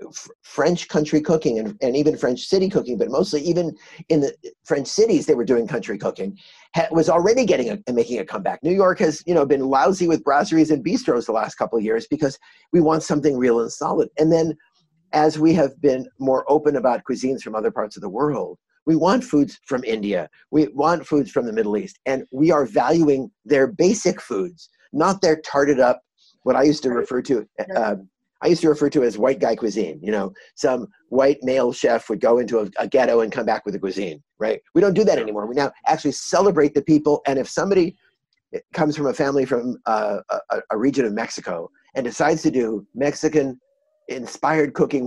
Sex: male